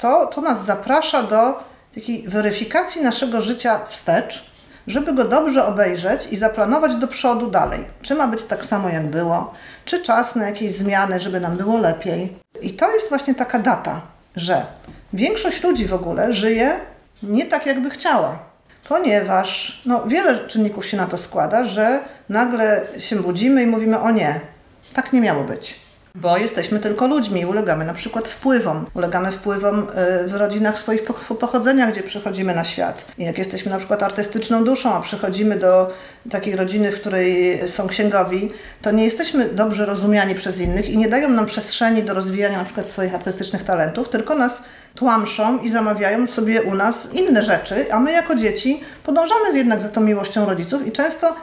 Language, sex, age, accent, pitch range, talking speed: Polish, female, 40-59, native, 200-245 Hz, 170 wpm